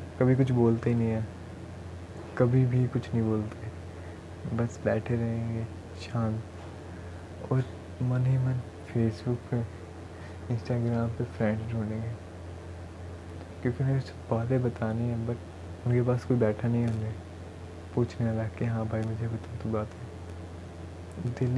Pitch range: 90-125 Hz